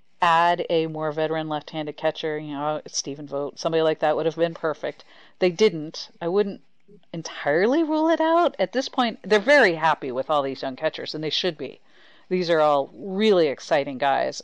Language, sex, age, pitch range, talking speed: English, female, 40-59, 150-185 Hz, 190 wpm